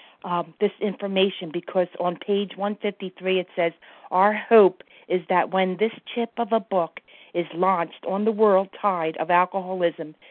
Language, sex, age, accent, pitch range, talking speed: English, female, 50-69, American, 175-215 Hz, 155 wpm